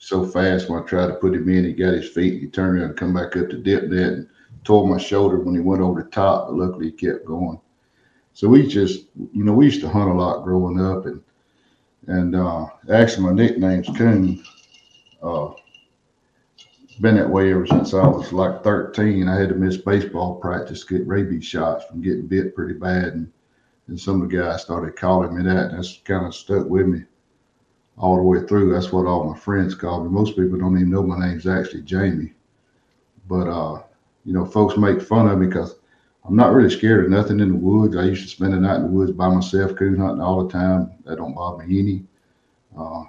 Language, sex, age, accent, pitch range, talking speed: English, male, 50-69, American, 90-95 Hz, 225 wpm